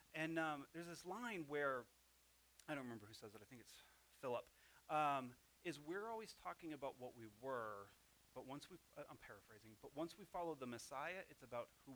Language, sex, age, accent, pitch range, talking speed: English, male, 30-49, American, 120-180 Hz, 200 wpm